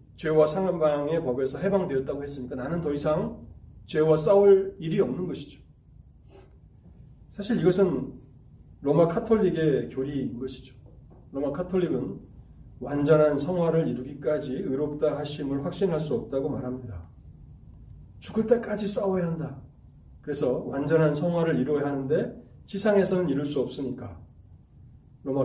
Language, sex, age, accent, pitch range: Korean, male, 30-49, native, 130-190 Hz